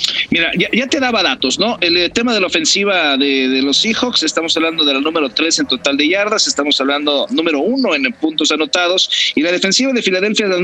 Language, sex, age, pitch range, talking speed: English, male, 50-69, 140-240 Hz, 230 wpm